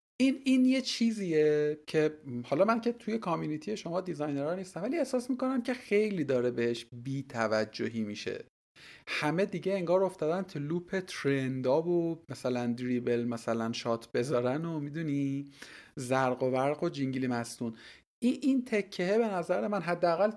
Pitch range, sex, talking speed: 125-190 Hz, male, 145 wpm